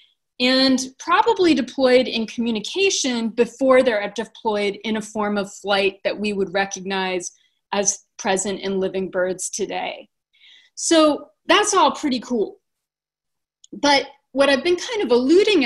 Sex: female